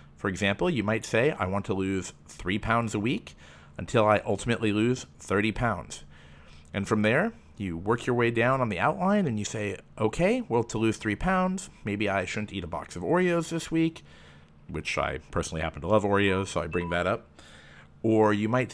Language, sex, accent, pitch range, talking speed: English, male, American, 85-130 Hz, 205 wpm